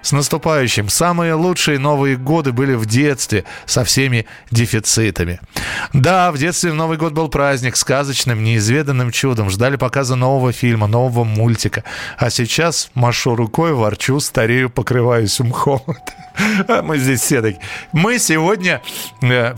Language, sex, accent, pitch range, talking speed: Russian, male, native, 125-185 Hz, 140 wpm